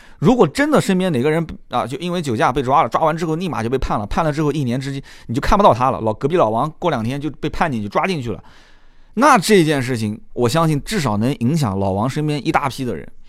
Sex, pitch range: male, 110-165 Hz